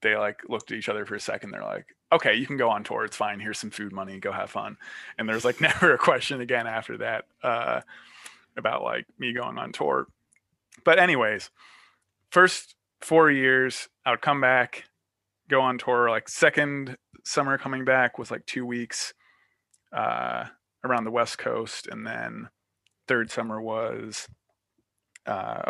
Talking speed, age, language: 175 wpm, 20-39, English